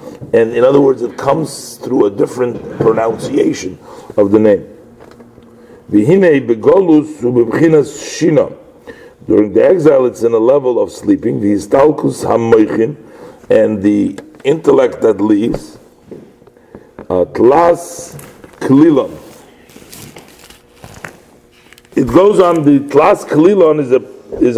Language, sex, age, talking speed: English, male, 50-69, 90 wpm